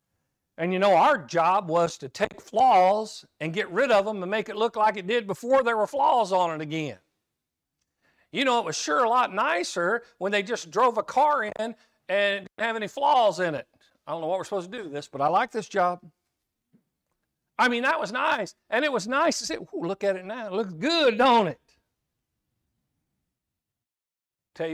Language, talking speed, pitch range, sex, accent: English, 210 wpm, 155-215 Hz, male, American